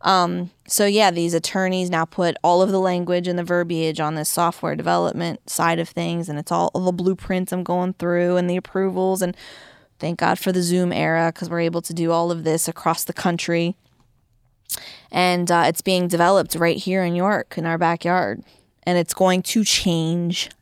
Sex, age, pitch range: female, 20-39, 160-185 Hz